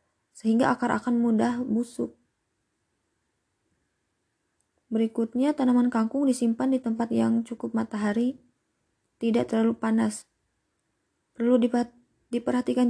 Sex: female